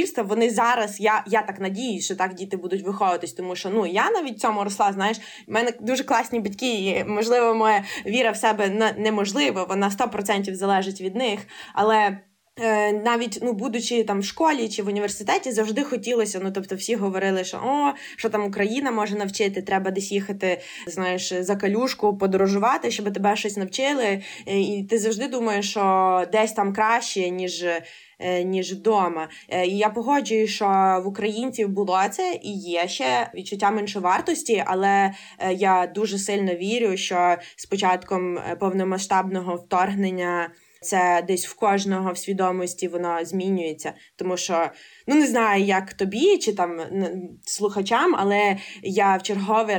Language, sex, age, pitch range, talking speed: Ukrainian, female, 20-39, 185-220 Hz, 155 wpm